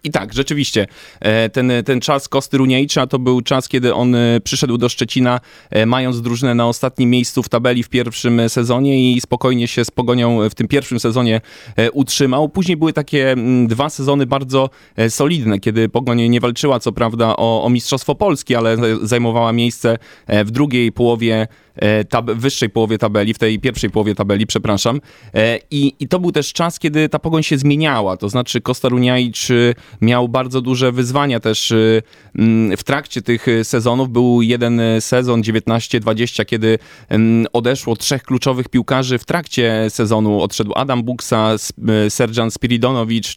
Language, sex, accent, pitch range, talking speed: Polish, male, native, 115-135 Hz, 150 wpm